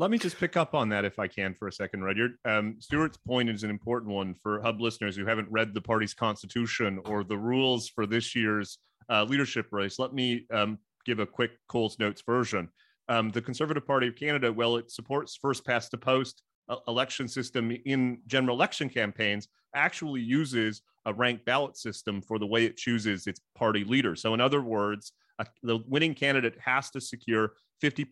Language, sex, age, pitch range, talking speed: English, male, 30-49, 110-130 Hz, 195 wpm